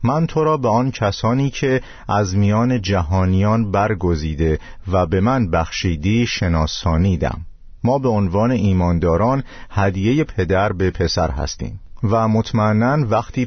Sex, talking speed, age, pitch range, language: male, 125 wpm, 50-69, 90-115 Hz, Persian